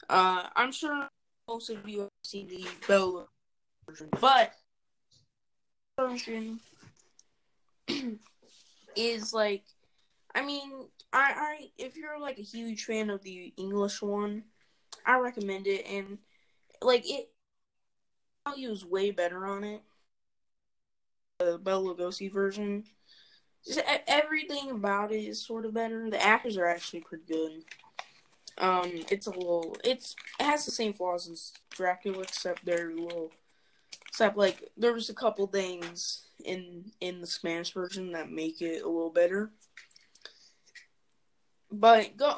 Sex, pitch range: female, 180-230 Hz